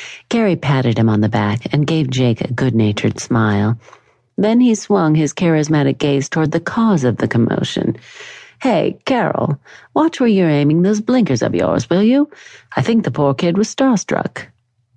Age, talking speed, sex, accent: 50-69, 170 wpm, female, American